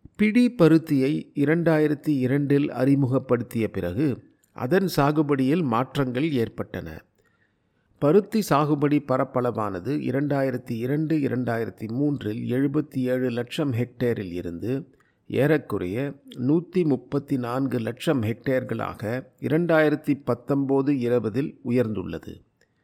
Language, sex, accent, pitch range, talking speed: Tamil, male, native, 120-150 Hz, 85 wpm